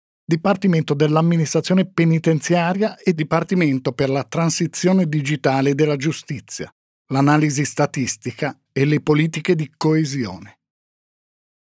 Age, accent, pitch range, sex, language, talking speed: 50-69, native, 135-170 Hz, male, Italian, 95 wpm